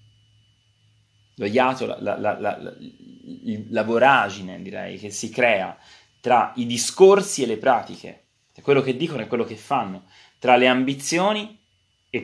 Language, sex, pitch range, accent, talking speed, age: Italian, male, 105-130 Hz, native, 130 wpm, 20-39